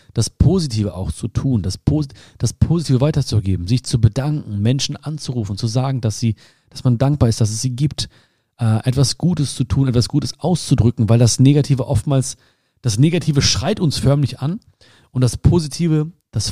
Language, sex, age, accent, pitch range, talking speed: German, male, 40-59, German, 110-135 Hz, 180 wpm